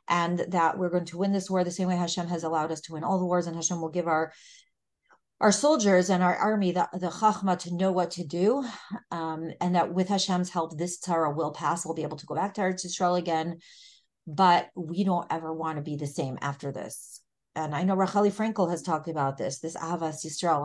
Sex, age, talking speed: female, 30-49, 240 wpm